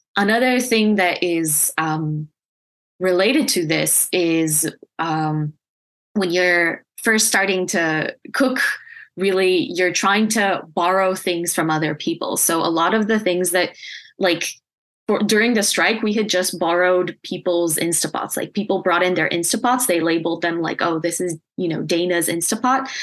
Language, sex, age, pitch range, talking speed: English, female, 20-39, 165-195 Hz, 155 wpm